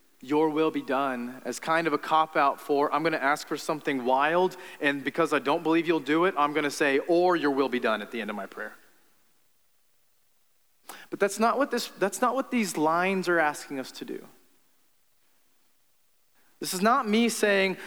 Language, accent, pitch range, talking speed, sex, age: English, American, 155-230 Hz, 195 wpm, male, 30-49